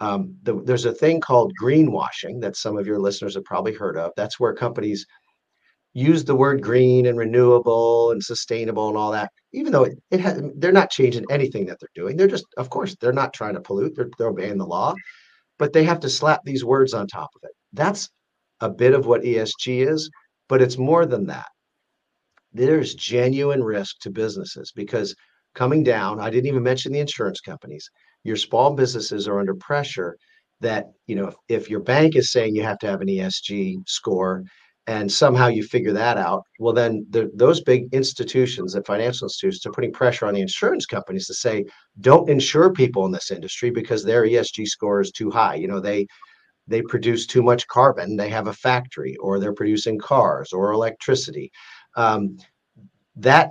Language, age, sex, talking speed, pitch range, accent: English, 50-69, male, 195 wpm, 105-140 Hz, American